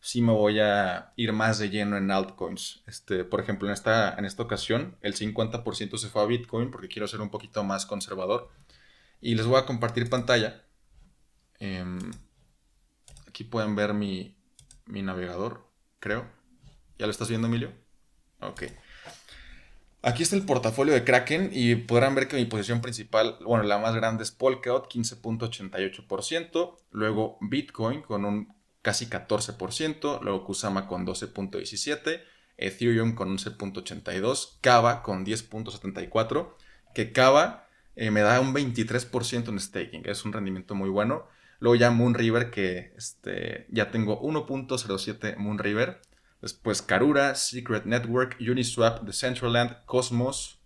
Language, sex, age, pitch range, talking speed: Spanish, male, 20-39, 100-120 Hz, 140 wpm